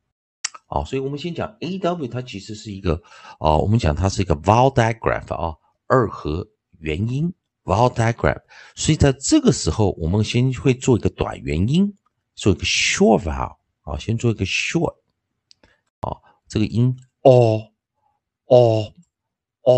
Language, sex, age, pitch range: Chinese, male, 50-69, 95-135 Hz